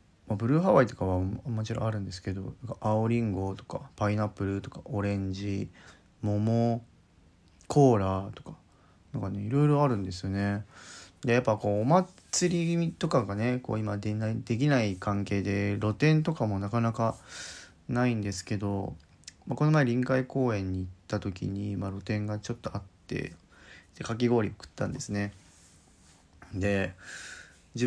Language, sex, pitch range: Japanese, male, 95-120 Hz